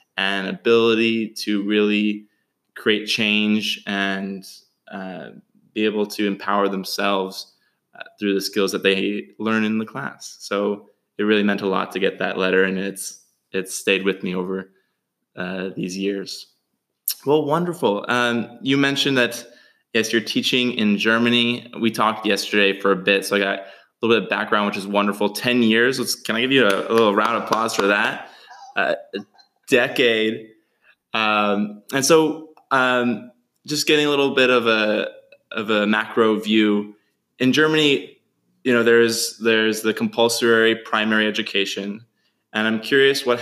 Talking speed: 160 wpm